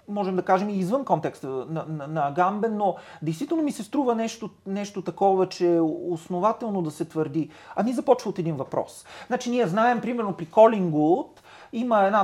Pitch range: 155-210 Hz